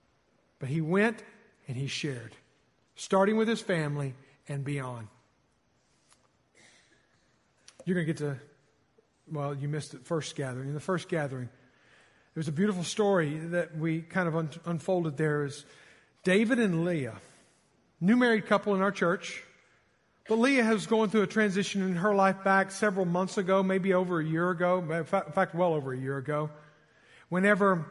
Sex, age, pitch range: male, 50-69, 165-220 Hz